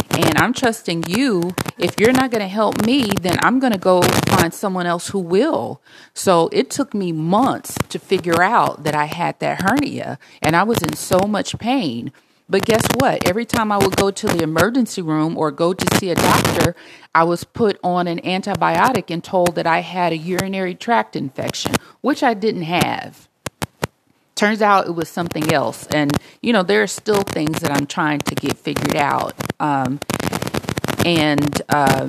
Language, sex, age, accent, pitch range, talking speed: English, female, 40-59, American, 155-200 Hz, 185 wpm